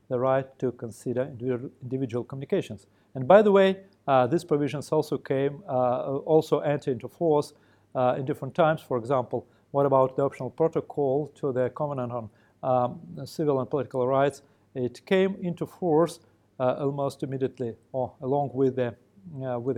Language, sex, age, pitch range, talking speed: English, male, 40-59, 125-155 Hz, 160 wpm